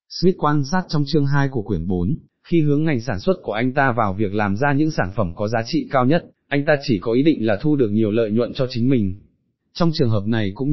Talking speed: 275 wpm